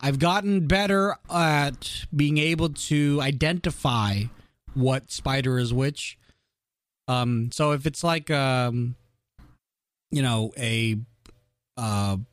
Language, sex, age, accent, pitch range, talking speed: English, male, 30-49, American, 120-155 Hz, 105 wpm